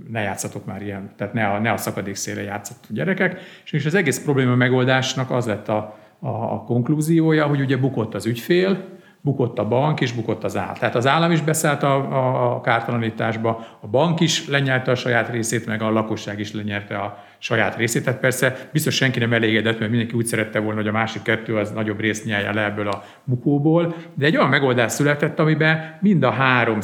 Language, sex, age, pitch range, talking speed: Hungarian, male, 50-69, 105-135 Hz, 205 wpm